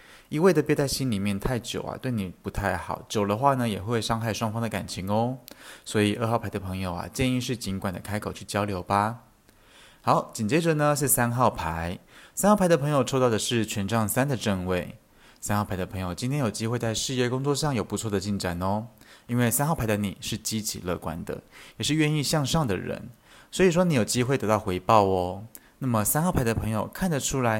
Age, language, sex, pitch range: 20-39, Chinese, male, 100-125 Hz